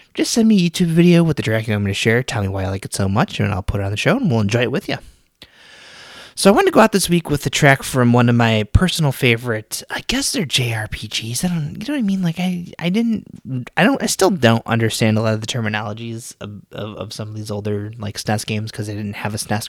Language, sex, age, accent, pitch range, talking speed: English, male, 20-39, American, 100-125 Hz, 285 wpm